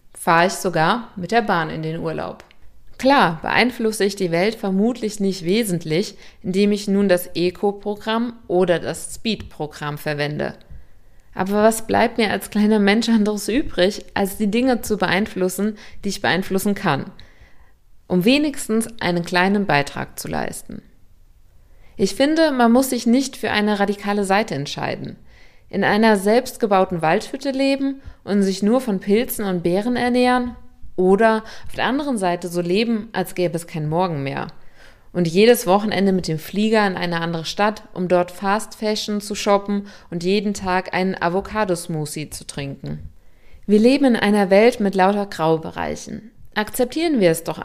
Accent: German